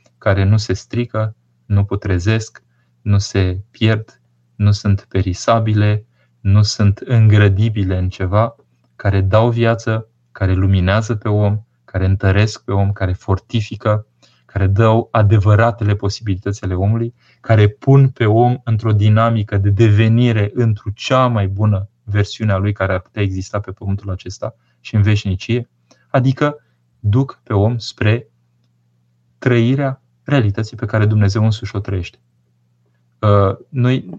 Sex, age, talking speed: male, 20-39, 130 wpm